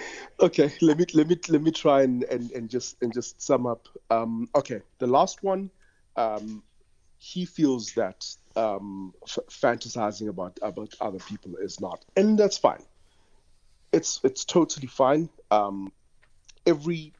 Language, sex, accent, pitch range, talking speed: English, male, South African, 105-160 Hz, 150 wpm